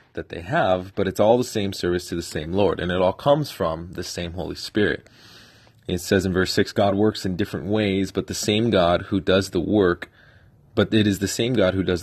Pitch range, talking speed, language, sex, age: 95-115 Hz, 240 wpm, English, male, 30-49